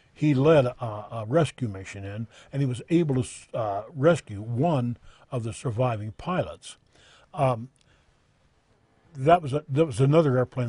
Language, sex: English, male